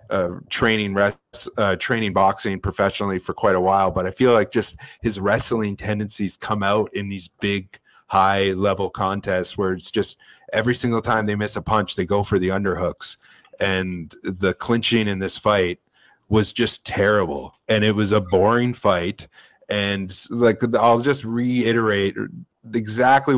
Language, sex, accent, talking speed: English, male, American, 160 wpm